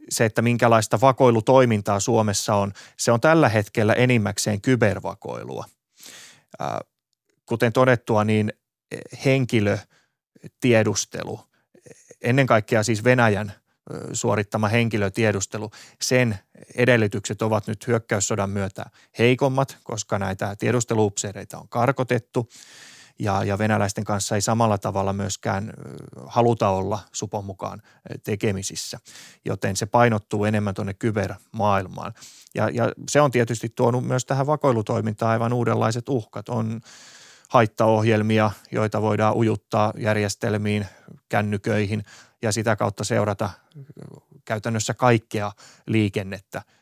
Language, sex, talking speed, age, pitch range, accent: Finnish, male, 100 wpm, 20-39, 105-120 Hz, native